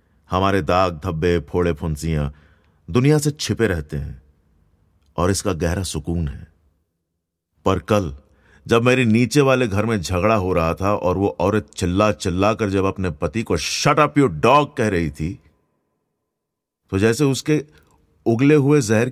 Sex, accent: male, native